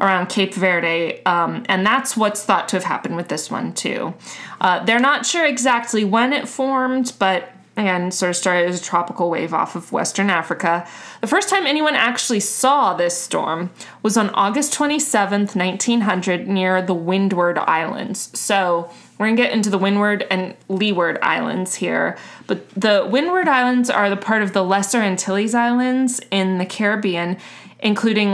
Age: 20-39